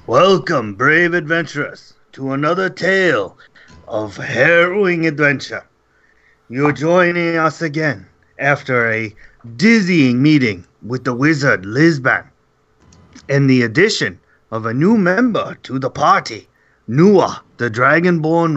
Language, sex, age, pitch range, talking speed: English, male, 30-49, 115-160 Hz, 110 wpm